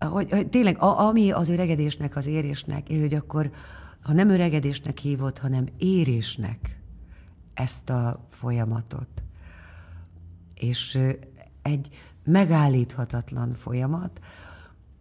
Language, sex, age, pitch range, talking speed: Hungarian, female, 60-79, 120-145 Hz, 95 wpm